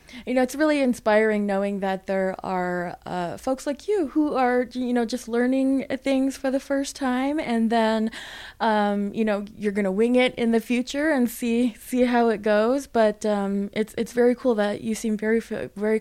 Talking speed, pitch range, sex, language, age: 200 wpm, 190-235 Hz, female, English, 20-39